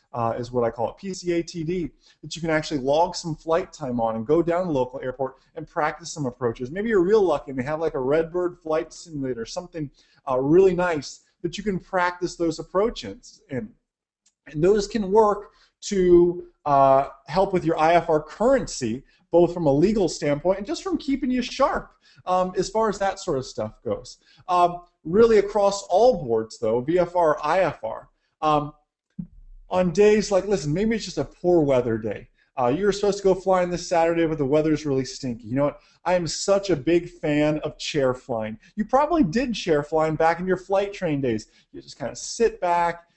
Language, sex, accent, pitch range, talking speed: English, male, American, 145-195 Hz, 200 wpm